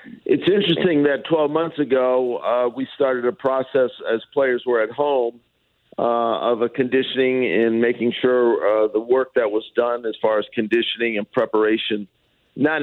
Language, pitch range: English, 115-130 Hz